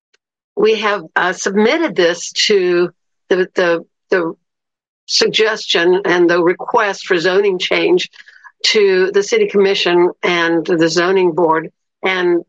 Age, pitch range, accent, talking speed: 60-79, 170-200 Hz, American, 120 wpm